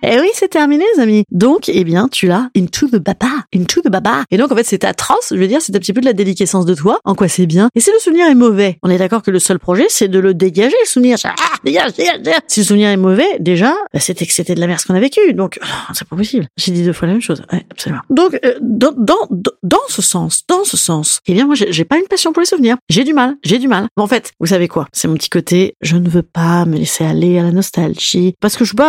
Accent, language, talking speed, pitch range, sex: French, French, 300 wpm, 180-255 Hz, female